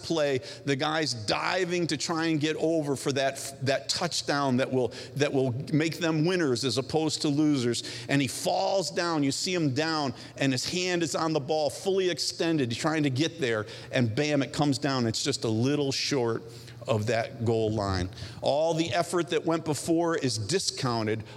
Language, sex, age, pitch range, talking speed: English, male, 50-69, 120-155 Hz, 190 wpm